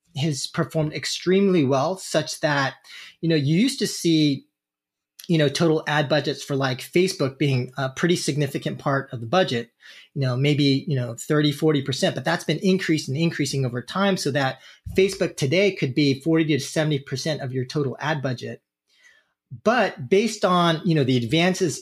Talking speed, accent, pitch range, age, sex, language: 175 wpm, American, 135-170 Hz, 30-49, male, English